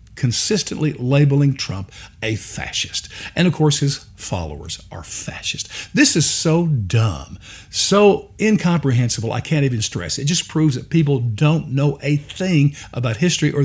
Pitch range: 105-155 Hz